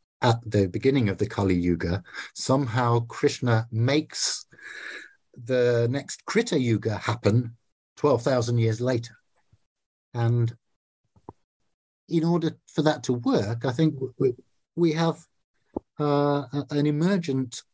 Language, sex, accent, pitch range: English, male, British, 105-135 Hz